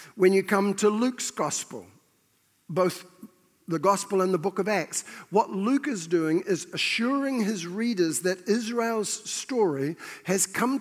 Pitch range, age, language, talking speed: 180-230 Hz, 50-69, English, 150 wpm